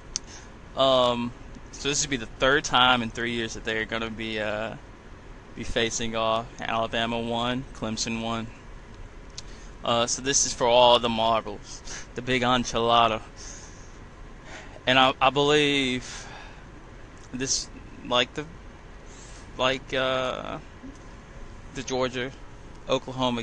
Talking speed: 120 wpm